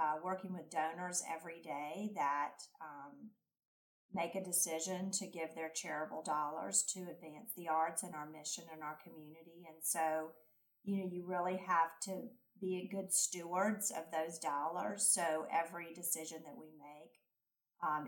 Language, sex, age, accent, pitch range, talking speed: English, female, 40-59, American, 160-190 Hz, 160 wpm